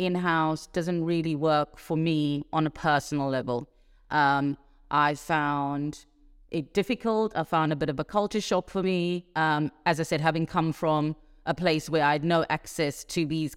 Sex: female